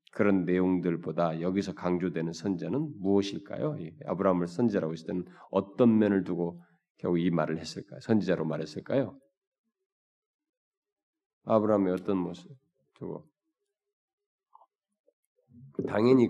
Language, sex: Korean, male